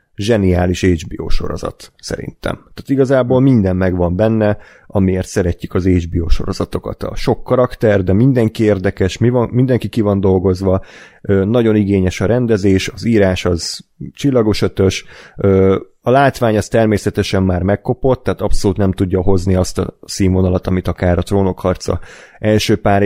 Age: 30-49